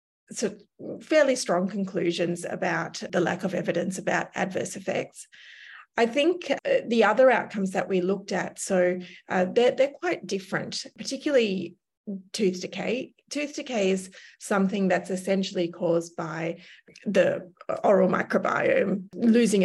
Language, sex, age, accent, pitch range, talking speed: English, female, 30-49, Australian, 180-215 Hz, 130 wpm